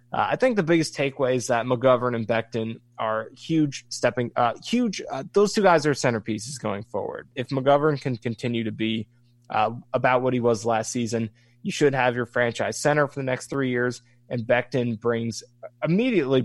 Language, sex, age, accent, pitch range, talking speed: English, male, 20-39, American, 115-130 Hz, 190 wpm